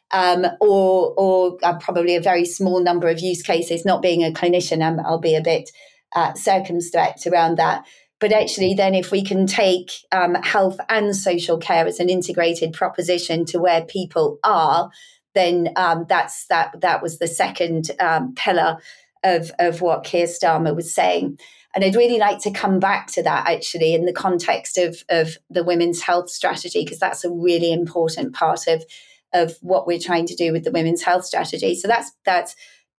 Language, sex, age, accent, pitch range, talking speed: English, female, 30-49, British, 170-190 Hz, 185 wpm